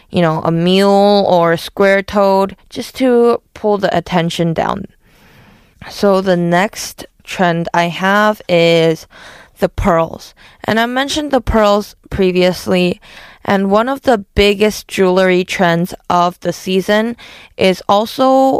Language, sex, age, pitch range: Korean, female, 20-39, 170-210 Hz